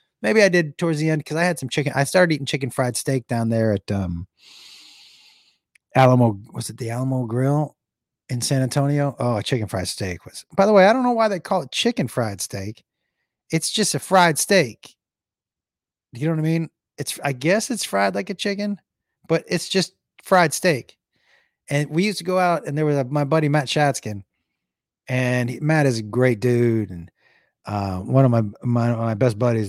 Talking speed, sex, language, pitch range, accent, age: 205 wpm, male, English, 110-150 Hz, American, 30-49